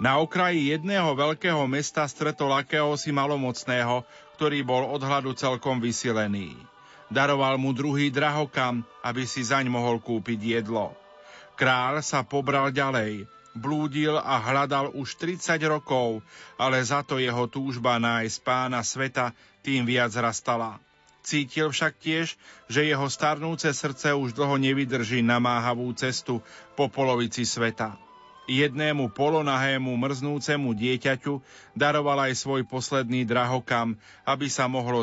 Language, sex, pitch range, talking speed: Slovak, male, 125-145 Hz, 125 wpm